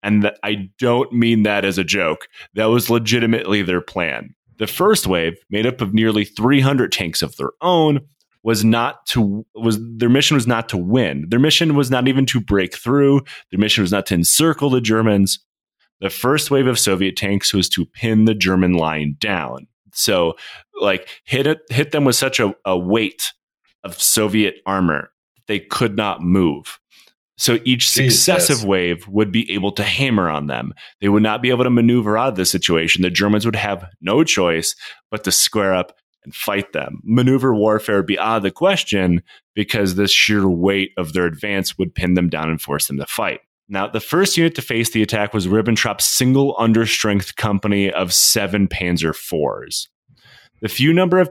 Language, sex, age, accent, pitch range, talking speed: English, male, 30-49, American, 95-125 Hz, 190 wpm